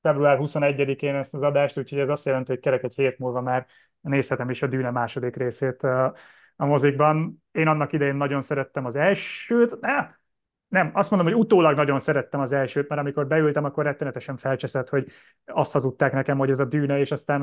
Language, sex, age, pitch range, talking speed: Hungarian, male, 30-49, 135-160 Hz, 195 wpm